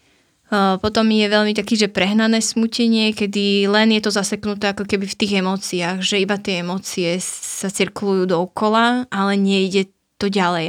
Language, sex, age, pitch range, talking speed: Slovak, female, 20-39, 190-210 Hz, 155 wpm